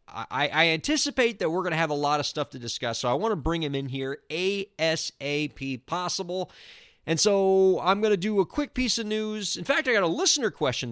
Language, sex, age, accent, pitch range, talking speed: English, male, 30-49, American, 120-175 Hz, 230 wpm